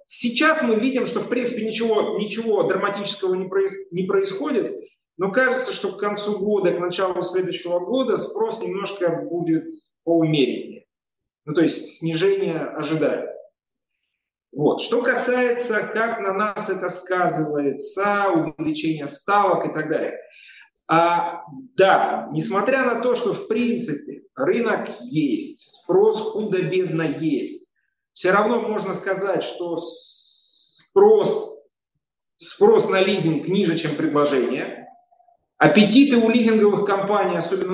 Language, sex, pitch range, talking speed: Russian, male, 160-235 Hz, 115 wpm